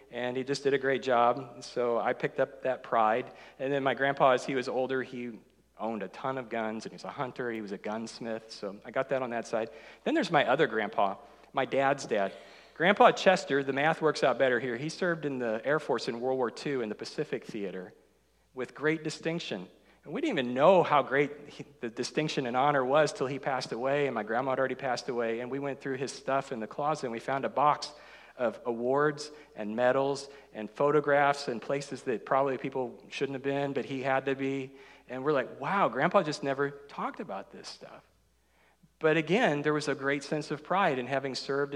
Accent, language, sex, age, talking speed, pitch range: American, English, male, 40-59, 220 wpm, 125-145 Hz